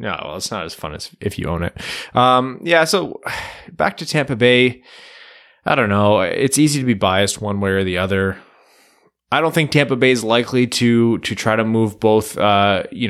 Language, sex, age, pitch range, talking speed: English, male, 20-39, 95-115 Hz, 210 wpm